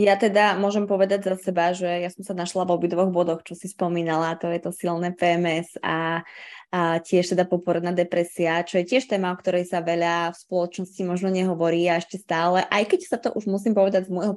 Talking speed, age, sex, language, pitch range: 215 wpm, 20-39, female, Slovak, 180-200 Hz